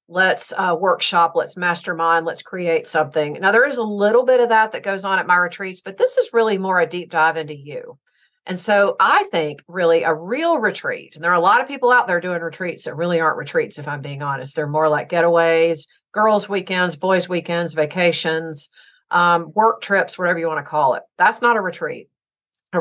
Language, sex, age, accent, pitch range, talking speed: English, female, 50-69, American, 165-205 Hz, 215 wpm